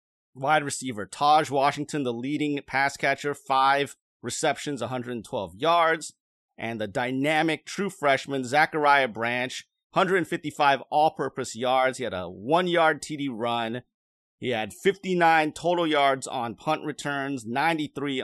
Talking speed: 120 wpm